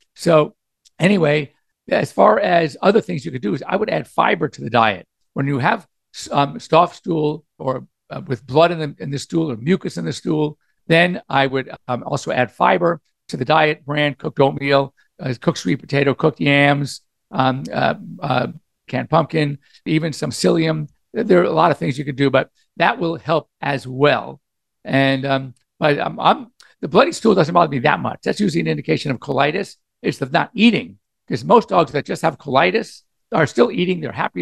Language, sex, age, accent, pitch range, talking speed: English, male, 50-69, American, 135-165 Hz, 200 wpm